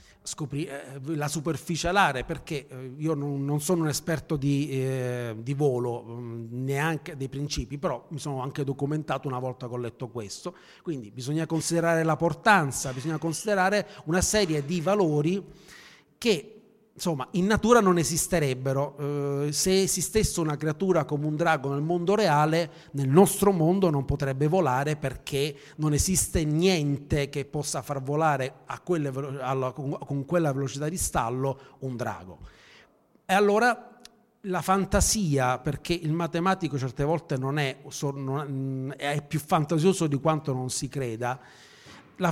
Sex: male